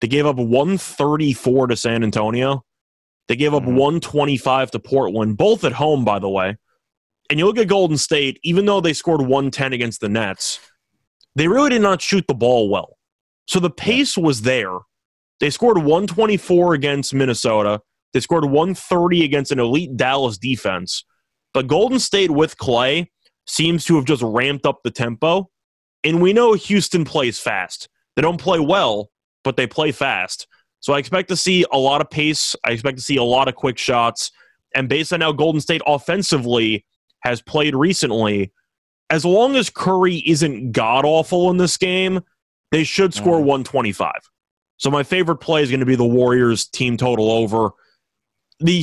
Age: 20-39